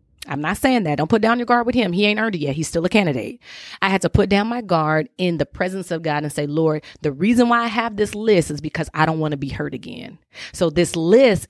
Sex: female